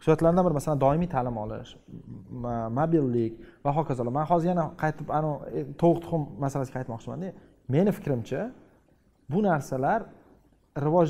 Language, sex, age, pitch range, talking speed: English, male, 30-49, 135-165 Hz, 150 wpm